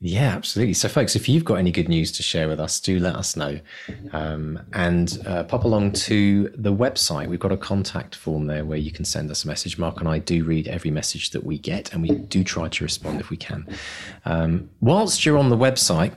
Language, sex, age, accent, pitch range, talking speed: English, male, 30-49, British, 80-100 Hz, 240 wpm